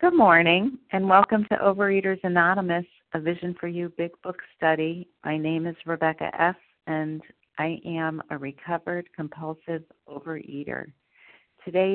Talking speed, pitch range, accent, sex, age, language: 135 wpm, 150-175 Hz, American, female, 50-69, English